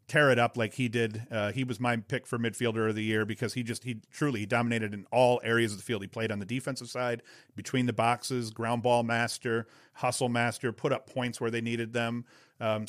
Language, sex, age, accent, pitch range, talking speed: English, male, 40-59, American, 115-130 Hz, 235 wpm